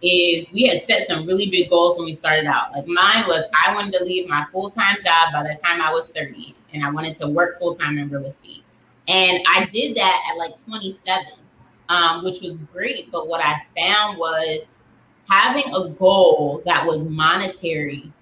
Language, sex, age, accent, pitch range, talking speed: English, female, 20-39, American, 160-205 Hz, 195 wpm